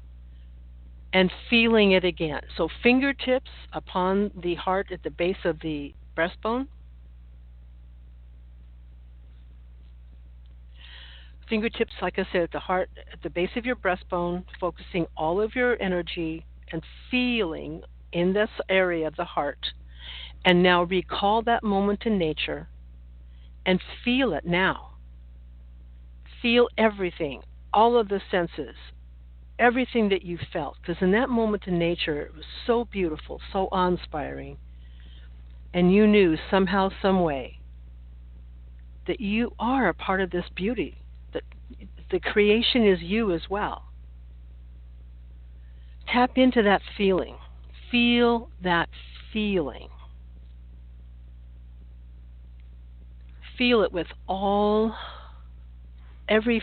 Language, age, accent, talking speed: English, 60-79, American, 115 wpm